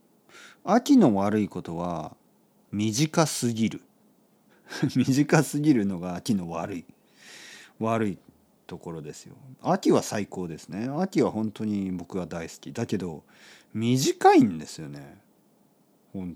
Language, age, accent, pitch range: Japanese, 40-59, native, 95-150 Hz